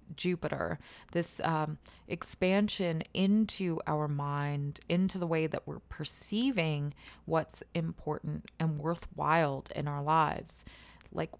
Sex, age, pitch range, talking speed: female, 20-39, 155-190 Hz, 110 wpm